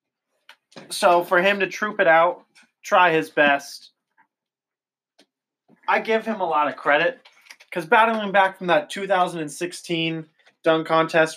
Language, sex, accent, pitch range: English, male, American, 150-180 Hz